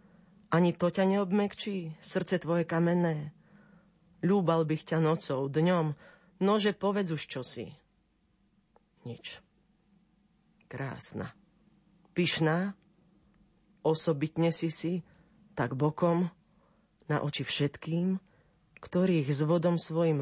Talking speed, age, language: 95 wpm, 40-59, Slovak